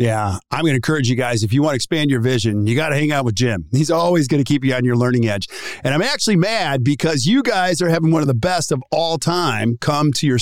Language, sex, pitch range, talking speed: English, male, 120-165 Hz, 290 wpm